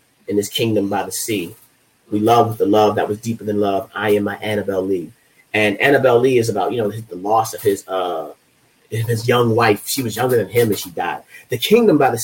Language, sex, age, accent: English, male, 30-49, American